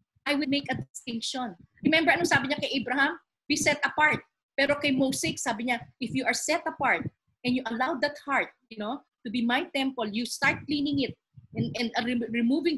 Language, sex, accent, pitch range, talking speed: Filipino, female, native, 220-290 Hz, 205 wpm